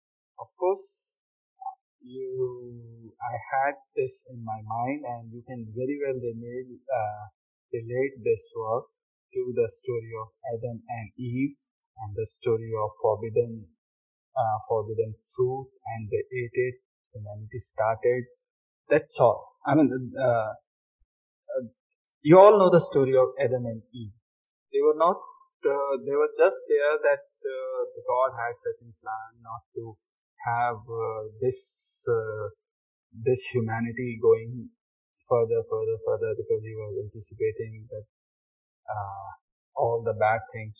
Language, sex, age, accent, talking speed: English, male, 20-39, Indian, 135 wpm